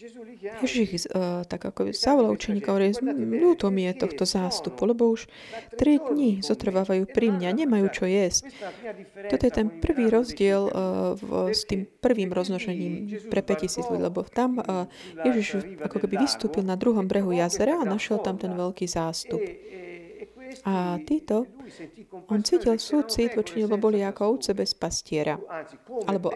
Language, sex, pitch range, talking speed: Slovak, female, 185-235 Hz, 140 wpm